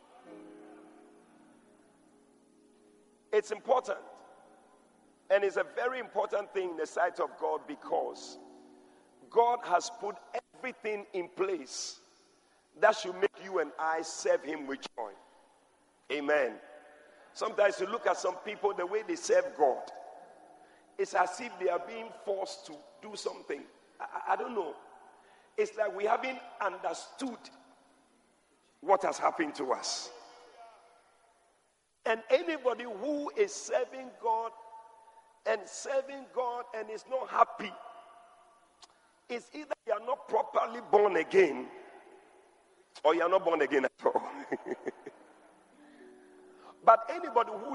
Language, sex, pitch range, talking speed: English, male, 205-280 Hz, 125 wpm